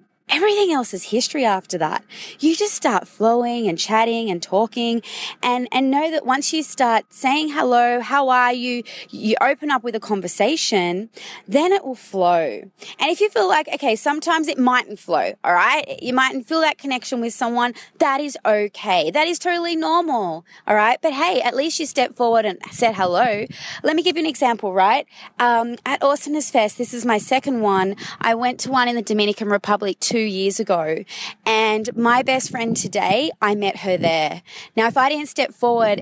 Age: 20-39